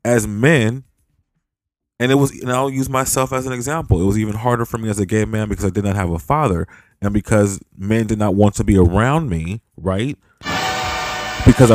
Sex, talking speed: male, 205 wpm